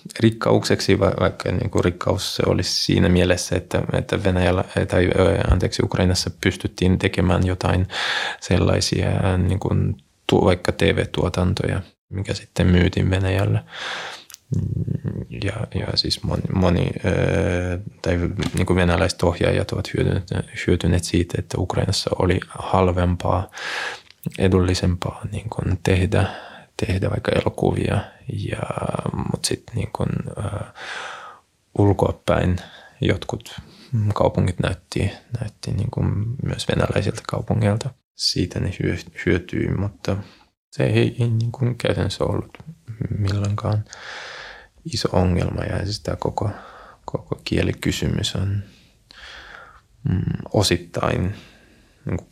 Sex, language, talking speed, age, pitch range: male, Finnish, 95 wpm, 20-39, 90-110 Hz